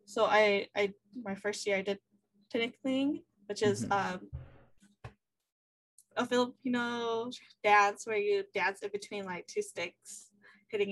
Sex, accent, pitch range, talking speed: female, American, 200-230 Hz, 130 wpm